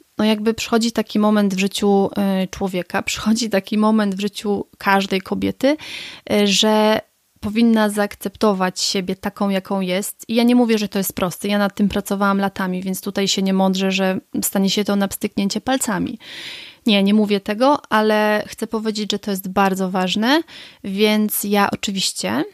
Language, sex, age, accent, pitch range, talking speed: Polish, female, 30-49, native, 195-220 Hz, 165 wpm